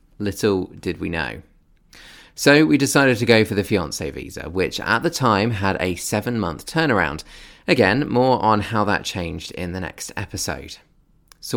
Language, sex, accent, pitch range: English, male, British, 90-110 Hz